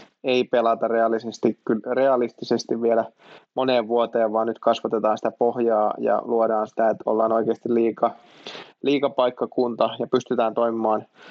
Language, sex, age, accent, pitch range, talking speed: Finnish, male, 20-39, native, 115-125 Hz, 110 wpm